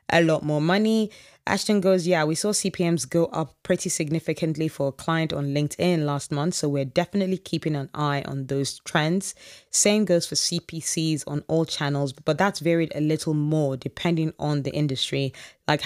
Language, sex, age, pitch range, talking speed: English, female, 20-39, 145-170 Hz, 180 wpm